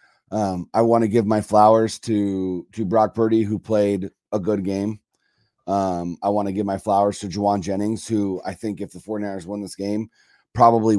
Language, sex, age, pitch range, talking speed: English, male, 30-49, 95-110 Hz, 185 wpm